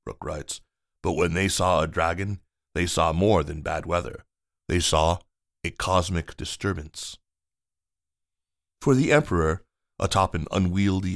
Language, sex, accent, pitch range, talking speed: English, male, American, 80-95 Hz, 135 wpm